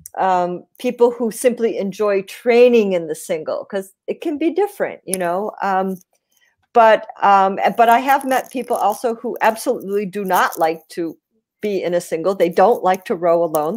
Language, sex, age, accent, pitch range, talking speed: English, female, 50-69, American, 185-230 Hz, 180 wpm